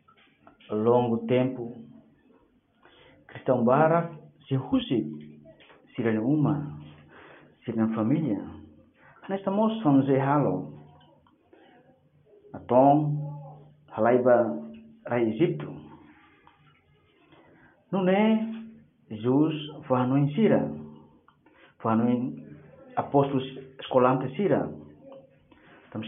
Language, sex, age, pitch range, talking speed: Portuguese, male, 50-69, 120-195 Hz, 70 wpm